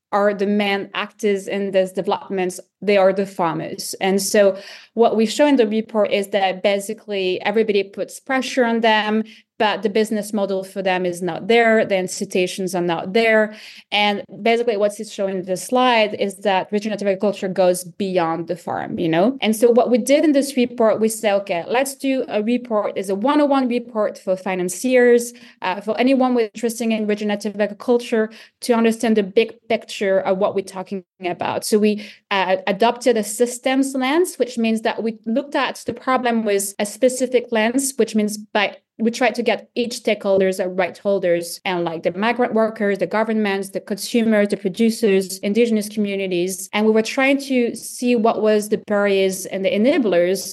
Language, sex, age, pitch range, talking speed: English, female, 20-39, 195-235 Hz, 185 wpm